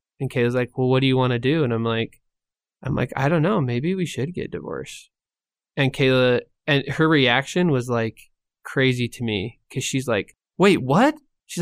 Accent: American